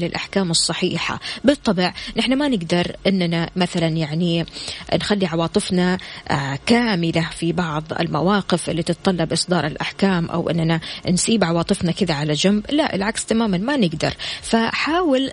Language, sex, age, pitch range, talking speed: Arabic, female, 20-39, 175-220 Hz, 125 wpm